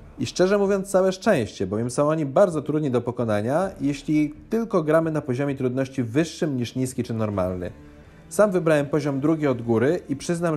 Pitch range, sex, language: 115-165 Hz, male, Polish